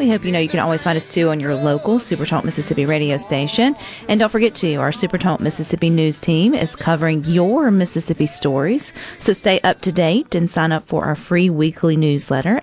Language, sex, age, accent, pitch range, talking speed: English, female, 40-59, American, 150-205 Hz, 210 wpm